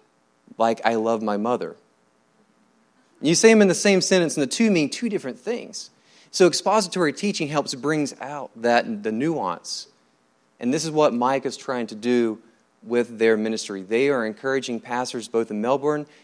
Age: 30-49